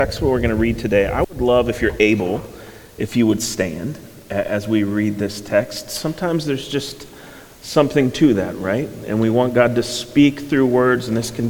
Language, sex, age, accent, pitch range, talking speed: English, male, 30-49, American, 110-135 Hz, 205 wpm